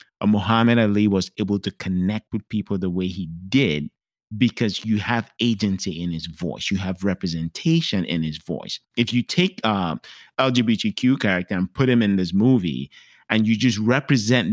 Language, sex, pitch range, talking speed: English, male, 95-125 Hz, 175 wpm